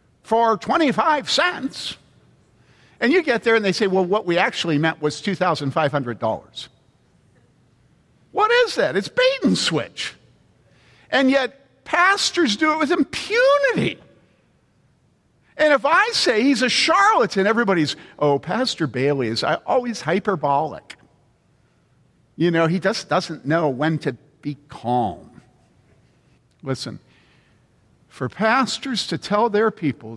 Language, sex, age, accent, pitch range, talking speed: English, male, 50-69, American, 135-225 Hz, 125 wpm